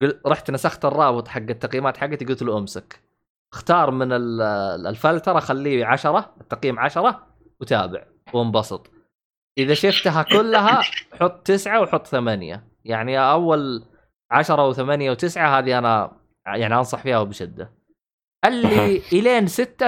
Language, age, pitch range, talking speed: Arabic, 20-39, 125-180 Hz, 120 wpm